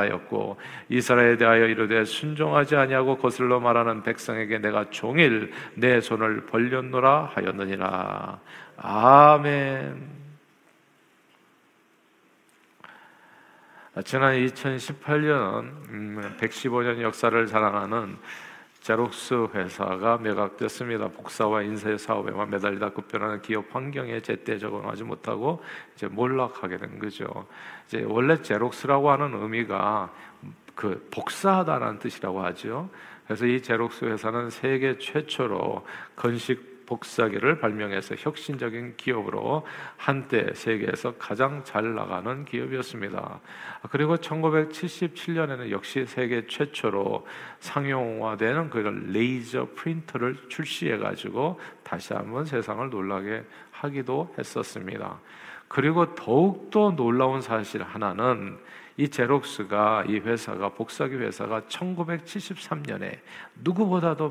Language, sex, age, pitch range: Korean, male, 50-69, 110-140 Hz